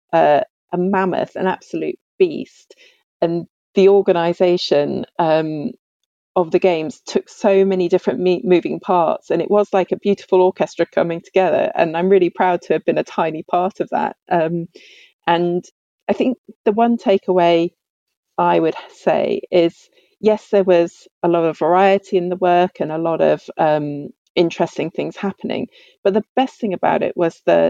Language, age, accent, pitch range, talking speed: English, 40-59, British, 170-205 Hz, 170 wpm